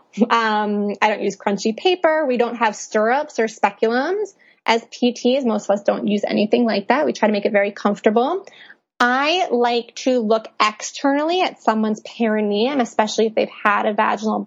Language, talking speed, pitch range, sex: English, 180 wpm, 215-260 Hz, female